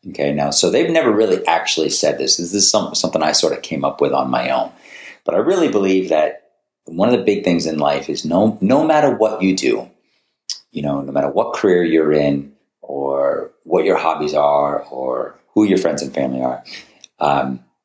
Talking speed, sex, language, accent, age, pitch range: 205 wpm, male, English, American, 40-59, 70-95 Hz